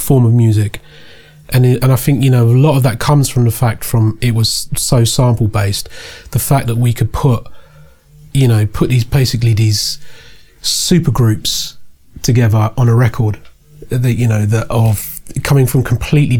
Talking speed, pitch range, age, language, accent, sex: 180 wpm, 115-145 Hz, 30-49, English, British, male